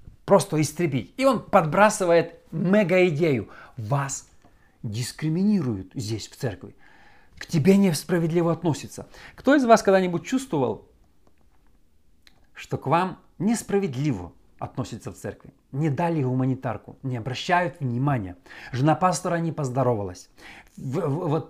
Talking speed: 105 wpm